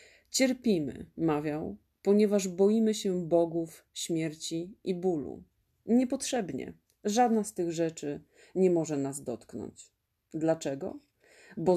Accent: native